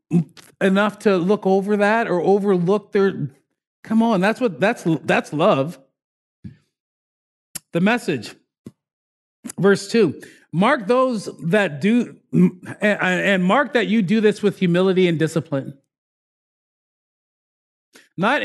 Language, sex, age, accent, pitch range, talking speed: English, male, 50-69, American, 180-235 Hz, 110 wpm